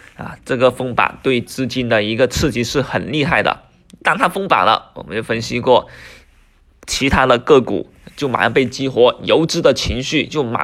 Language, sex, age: Chinese, male, 20-39